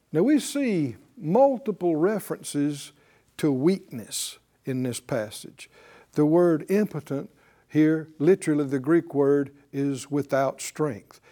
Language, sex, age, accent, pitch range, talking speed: English, male, 60-79, American, 140-190 Hz, 110 wpm